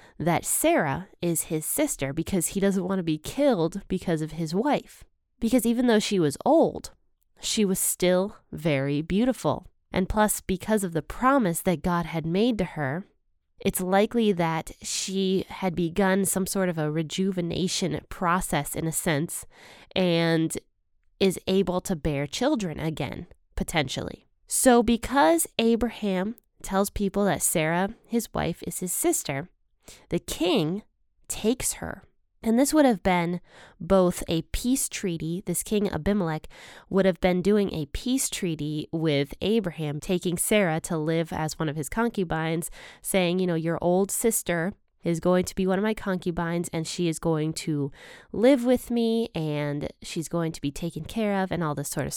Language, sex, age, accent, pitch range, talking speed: English, female, 20-39, American, 165-220 Hz, 165 wpm